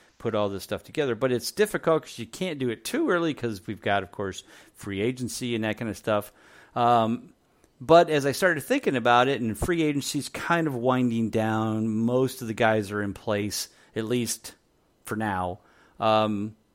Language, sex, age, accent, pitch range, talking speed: English, male, 40-59, American, 105-125 Hz, 195 wpm